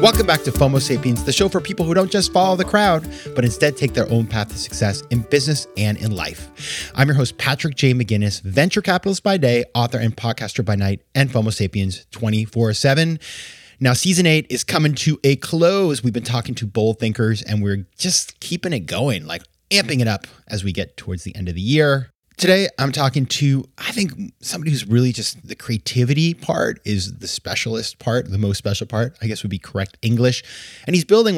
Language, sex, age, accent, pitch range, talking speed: English, male, 30-49, American, 100-135 Hz, 210 wpm